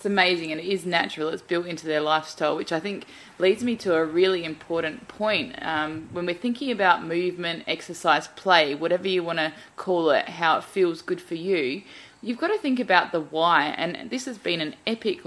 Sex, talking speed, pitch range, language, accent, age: female, 210 wpm, 155-185 Hz, English, Australian, 20-39